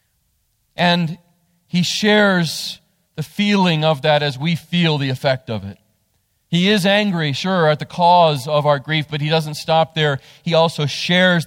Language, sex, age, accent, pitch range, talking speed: English, male, 40-59, American, 120-155 Hz, 170 wpm